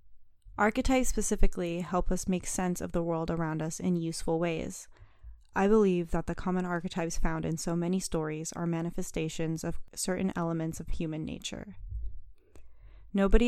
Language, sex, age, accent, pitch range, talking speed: English, female, 10-29, American, 165-185 Hz, 150 wpm